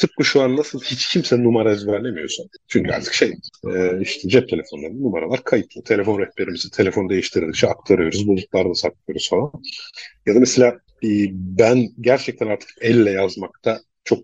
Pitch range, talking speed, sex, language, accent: 100-125 Hz, 150 wpm, male, Turkish, native